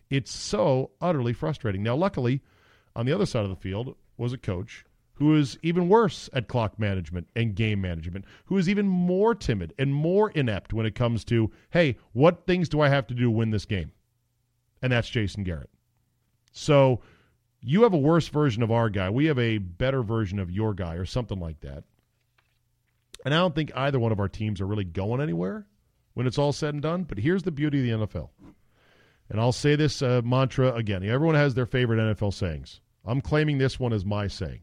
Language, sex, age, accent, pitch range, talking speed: English, male, 40-59, American, 105-140 Hz, 210 wpm